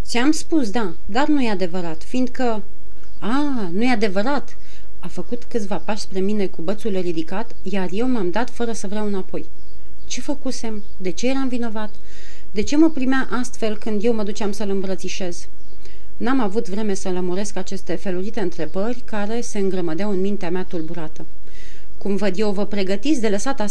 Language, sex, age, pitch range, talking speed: Romanian, female, 30-49, 185-240 Hz, 170 wpm